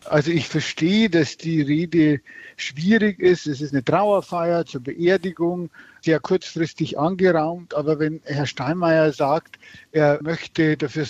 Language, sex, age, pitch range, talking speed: German, male, 50-69, 145-170 Hz, 135 wpm